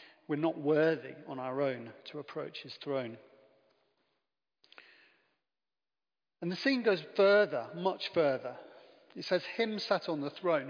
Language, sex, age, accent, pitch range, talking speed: English, male, 40-59, British, 135-185 Hz, 135 wpm